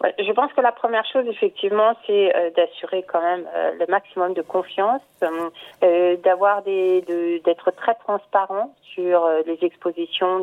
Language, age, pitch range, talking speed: French, 40-59, 165-205 Hz, 165 wpm